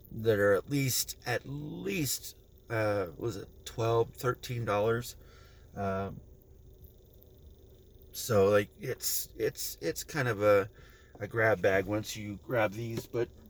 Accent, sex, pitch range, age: American, male, 100-125 Hz, 30-49